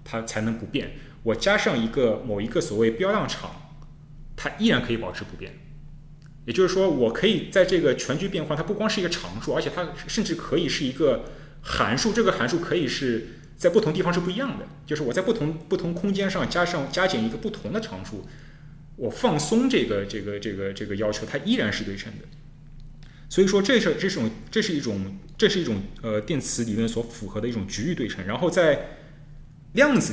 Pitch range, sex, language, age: 115-175 Hz, male, Chinese, 20-39